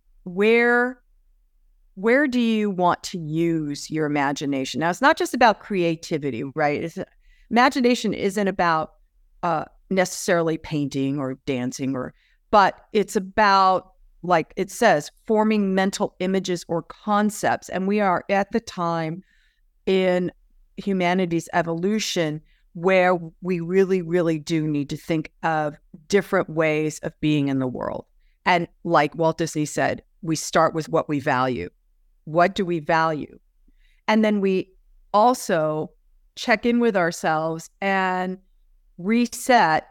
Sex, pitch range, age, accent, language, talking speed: female, 160-195 Hz, 50-69, American, English, 130 wpm